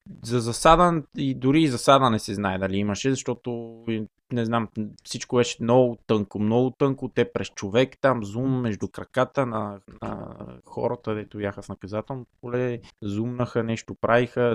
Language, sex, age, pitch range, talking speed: Bulgarian, male, 20-39, 105-130 Hz, 155 wpm